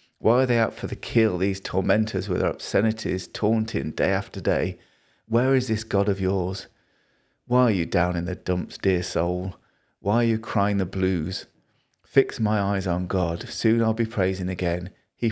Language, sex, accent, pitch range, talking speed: English, male, British, 90-105 Hz, 190 wpm